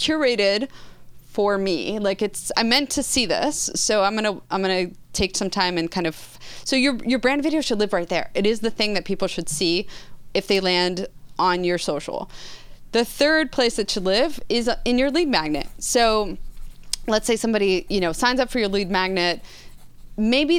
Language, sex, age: English, female, 30-49